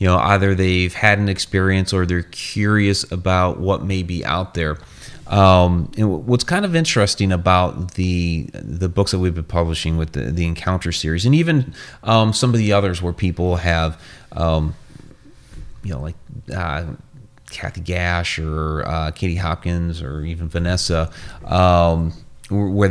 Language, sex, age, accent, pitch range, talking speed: English, male, 30-49, American, 85-100 Hz, 160 wpm